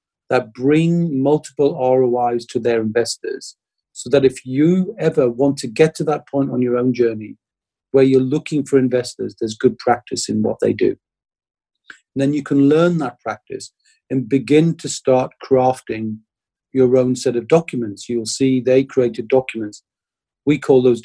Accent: British